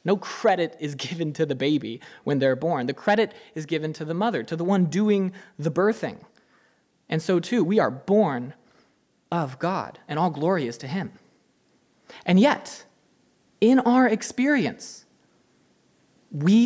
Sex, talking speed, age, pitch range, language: male, 155 wpm, 20-39, 155-210 Hz, English